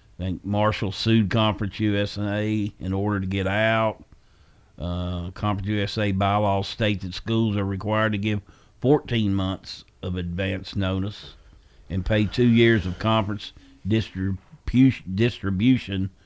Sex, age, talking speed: male, 50-69, 125 wpm